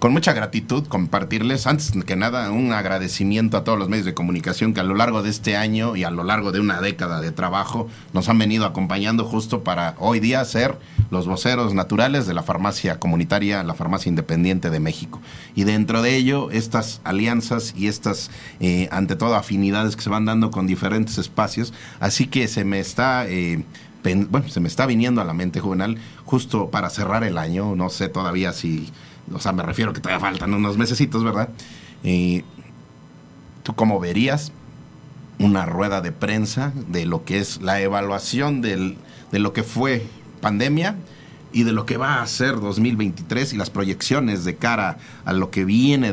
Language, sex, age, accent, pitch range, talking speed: Spanish, male, 40-59, Mexican, 95-120 Hz, 180 wpm